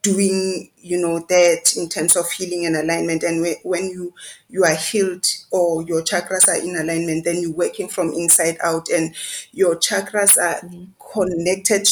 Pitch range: 175-195 Hz